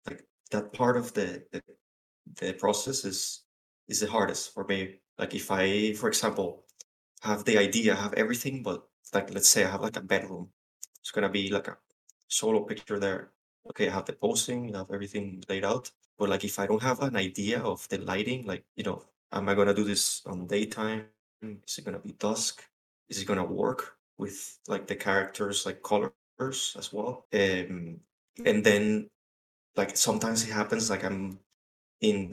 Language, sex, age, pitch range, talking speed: English, male, 20-39, 95-110 Hz, 190 wpm